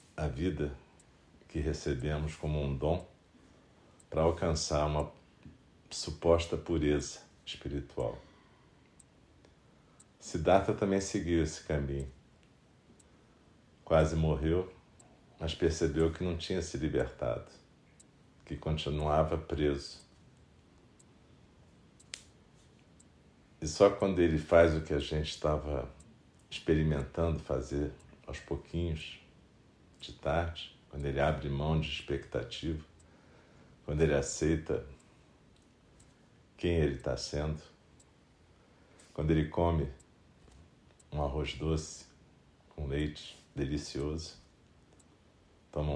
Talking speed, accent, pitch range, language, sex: 90 wpm, Brazilian, 75-80 Hz, Portuguese, male